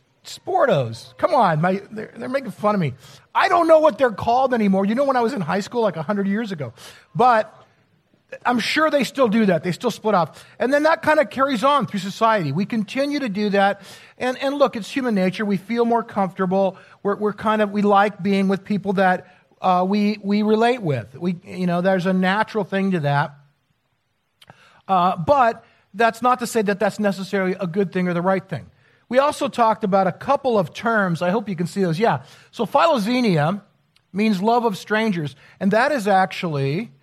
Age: 50-69